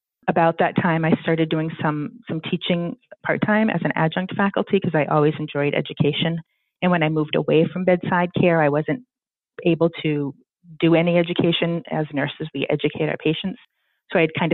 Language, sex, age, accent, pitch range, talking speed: English, female, 30-49, American, 155-180 Hz, 180 wpm